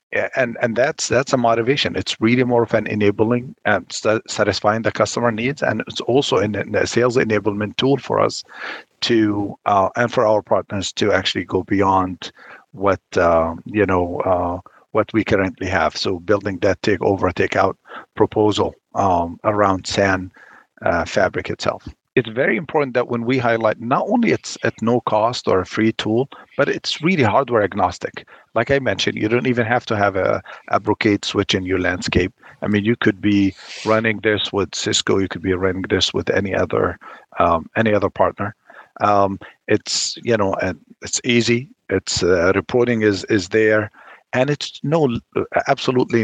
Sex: male